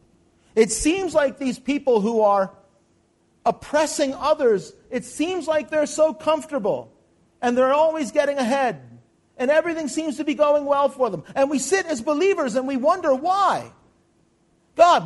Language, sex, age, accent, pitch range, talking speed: English, male, 40-59, American, 240-315 Hz, 155 wpm